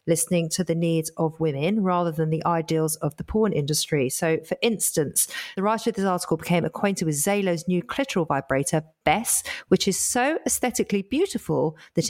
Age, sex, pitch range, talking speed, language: 40-59, female, 160-215 Hz, 180 wpm, English